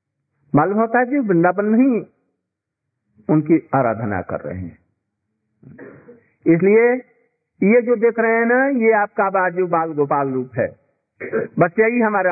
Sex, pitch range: male, 125-195 Hz